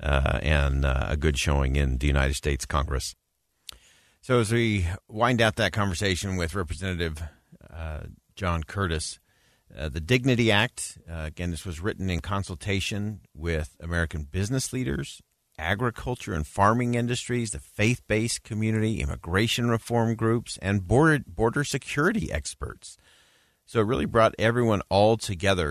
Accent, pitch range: American, 85-110 Hz